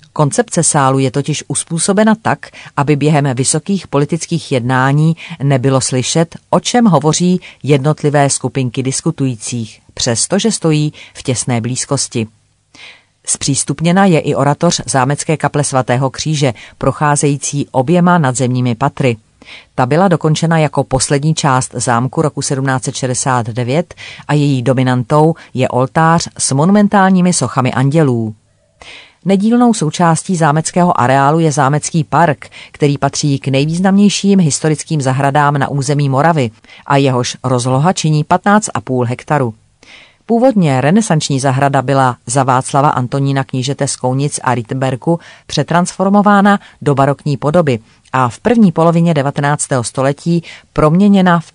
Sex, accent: female, native